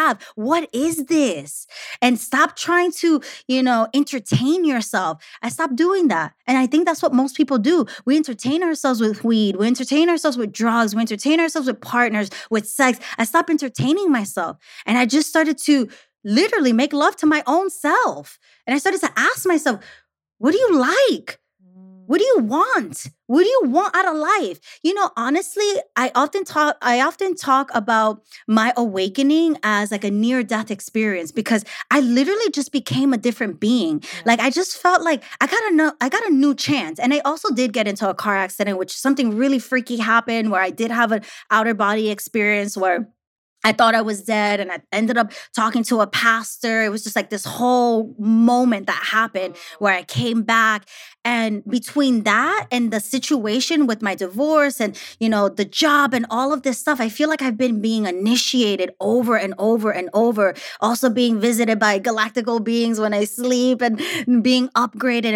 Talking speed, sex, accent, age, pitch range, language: 190 wpm, female, American, 20-39, 220-290 Hz, English